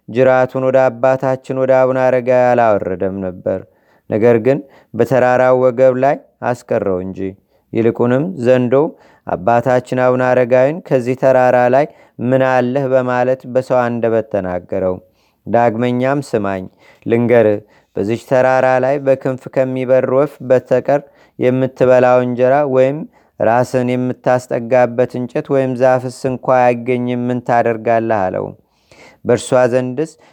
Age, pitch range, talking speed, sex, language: 30-49, 120-130 Hz, 100 wpm, male, Amharic